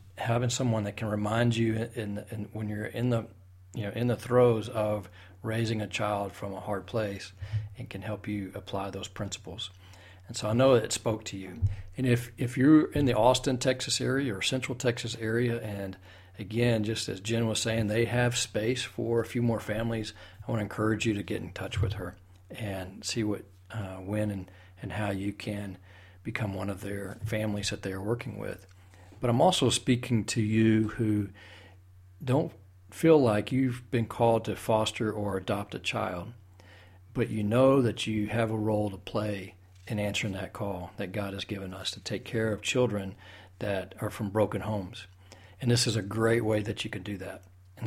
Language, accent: English, American